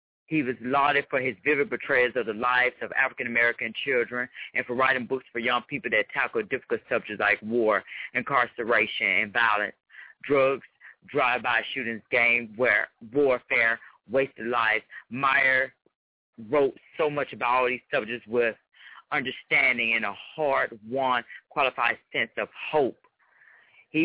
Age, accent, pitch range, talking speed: 40-59, American, 110-130 Hz, 135 wpm